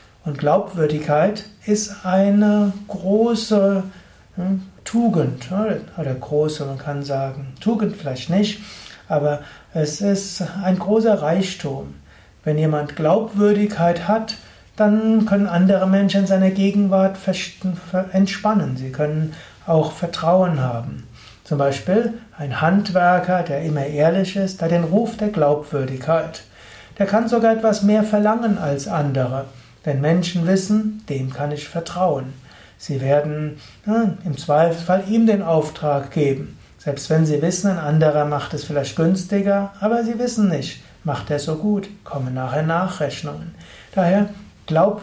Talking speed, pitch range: 130 wpm, 145-200 Hz